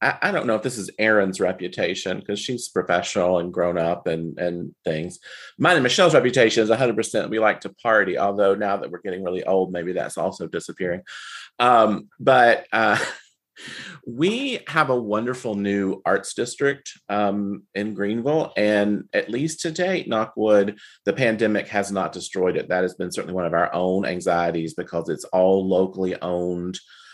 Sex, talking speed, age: male, 170 wpm, 30-49